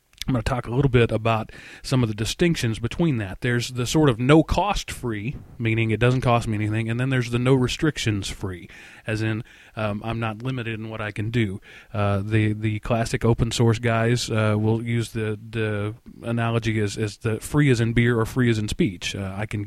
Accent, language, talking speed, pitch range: American, English, 205 wpm, 105-125 Hz